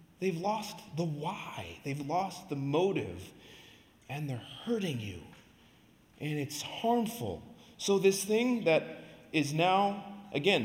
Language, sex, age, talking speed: English, male, 30-49, 125 wpm